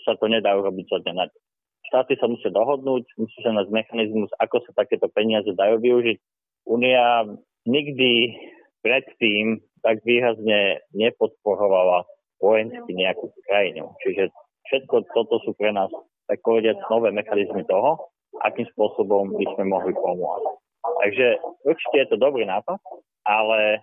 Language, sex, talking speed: Slovak, male, 130 wpm